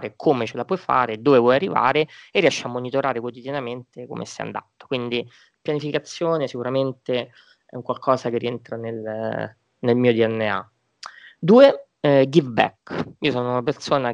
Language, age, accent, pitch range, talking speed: Italian, 20-39, native, 115-140 Hz, 155 wpm